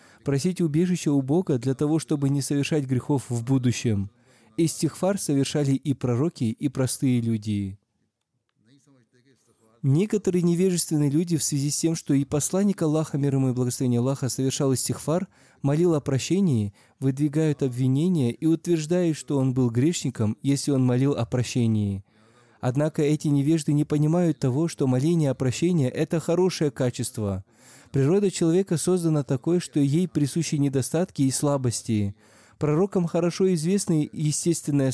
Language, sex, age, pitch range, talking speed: Russian, male, 20-39, 130-160 Hz, 140 wpm